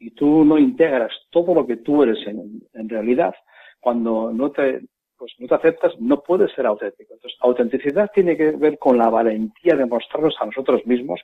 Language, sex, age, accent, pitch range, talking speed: Spanish, male, 40-59, Spanish, 120-155 Hz, 190 wpm